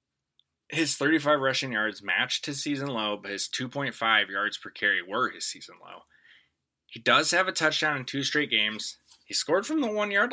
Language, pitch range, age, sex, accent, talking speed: English, 105-140 Hz, 20-39, male, American, 185 wpm